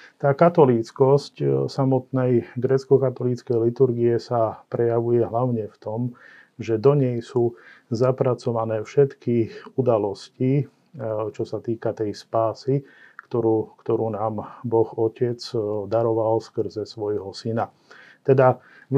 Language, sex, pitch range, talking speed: Slovak, male, 110-125 Hz, 105 wpm